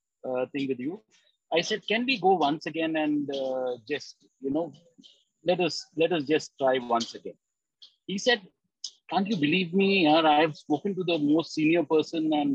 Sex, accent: male, Indian